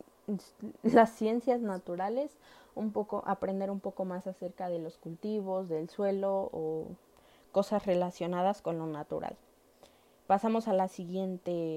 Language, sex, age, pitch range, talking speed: Spanish, female, 20-39, 180-215 Hz, 115 wpm